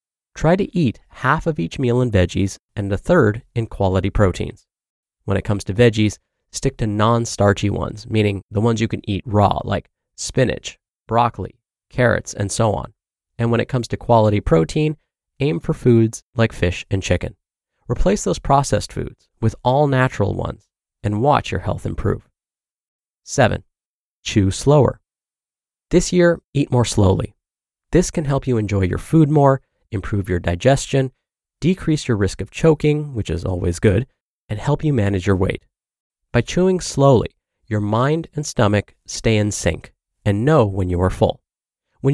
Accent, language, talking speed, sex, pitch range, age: American, English, 165 wpm, male, 100-140 Hz, 30-49